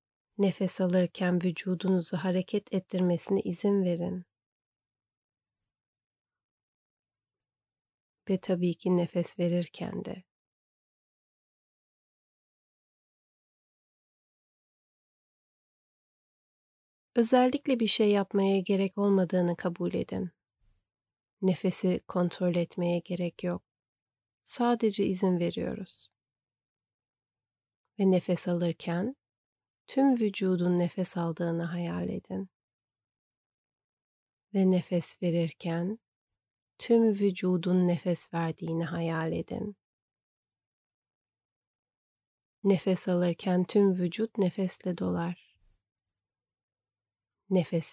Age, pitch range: 30-49, 110-185 Hz